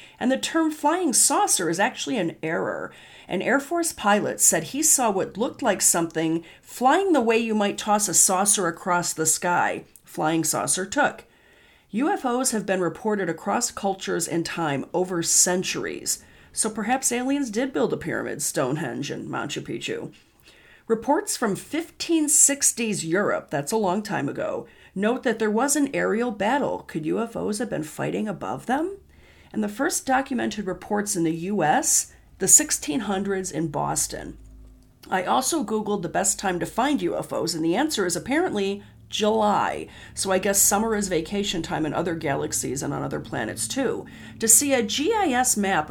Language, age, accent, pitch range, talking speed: English, 40-59, American, 175-265 Hz, 165 wpm